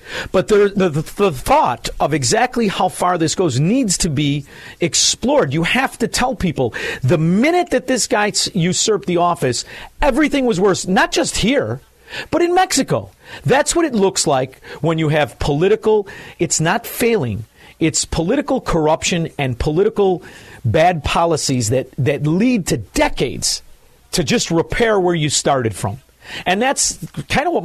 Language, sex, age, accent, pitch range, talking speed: English, male, 50-69, American, 140-210 Hz, 160 wpm